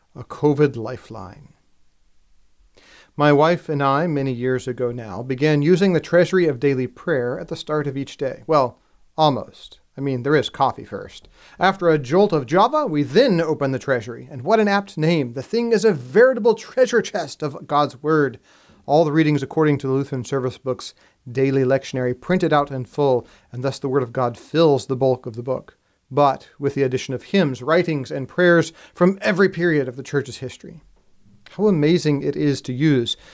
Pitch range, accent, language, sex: 130-165 Hz, American, English, male